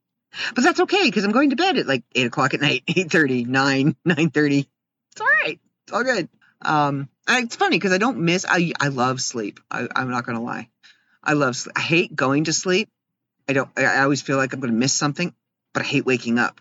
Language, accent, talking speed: English, American, 240 wpm